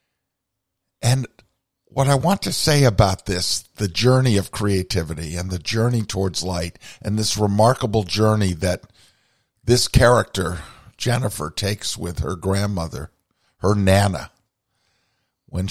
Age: 50-69